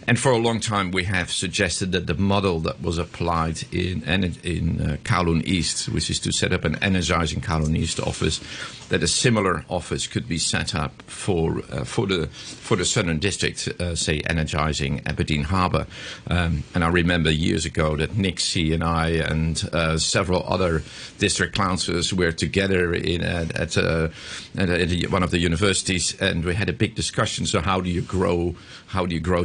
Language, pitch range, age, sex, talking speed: English, 80-95 Hz, 50-69, male, 200 wpm